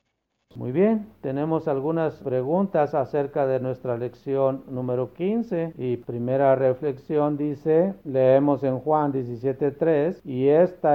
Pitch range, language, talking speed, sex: 130-175 Hz, Spanish, 115 wpm, male